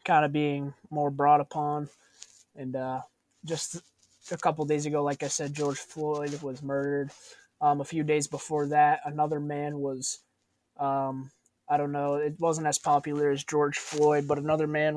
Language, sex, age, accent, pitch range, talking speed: English, male, 20-39, American, 140-150 Hz, 170 wpm